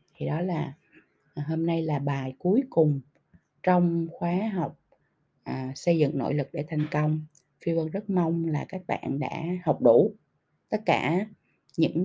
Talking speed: 165 wpm